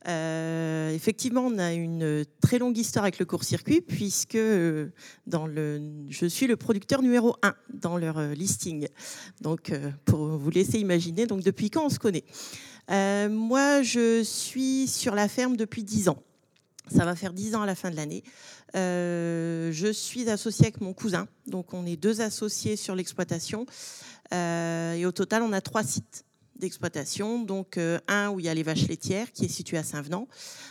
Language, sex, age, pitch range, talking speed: French, female, 40-59, 170-215 Hz, 180 wpm